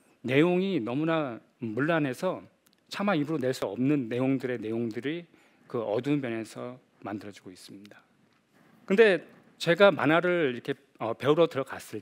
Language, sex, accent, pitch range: Korean, male, native, 125-185 Hz